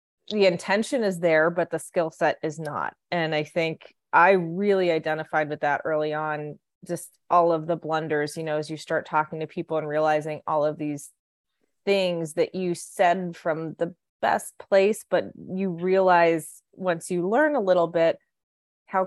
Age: 20-39